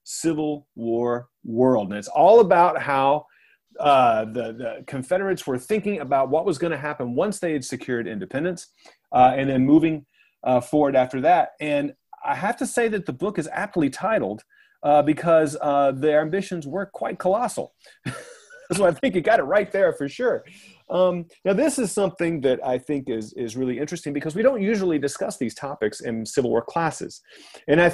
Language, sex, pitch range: English, male, 120-175 Hz